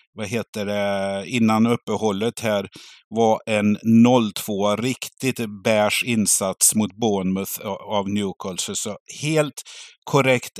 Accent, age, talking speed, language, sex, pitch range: native, 50-69, 110 wpm, Swedish, male, 105-120 Hz